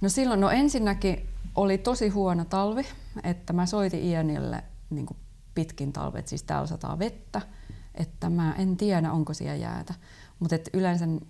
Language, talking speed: Finnish, 150 wpm